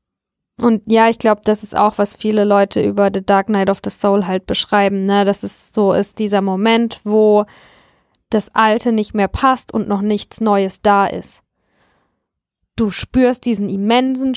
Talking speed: 175 wpm